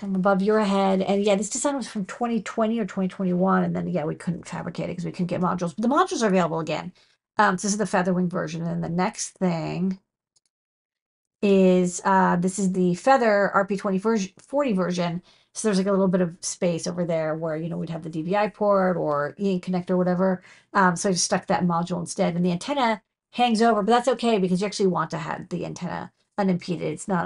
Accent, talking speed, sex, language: American, 220 wpm, female, English